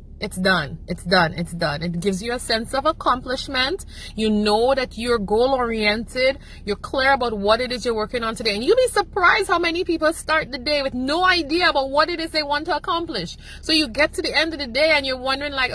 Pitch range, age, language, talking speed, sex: 205-290 Hz, 30-49, English, 240 wpm, female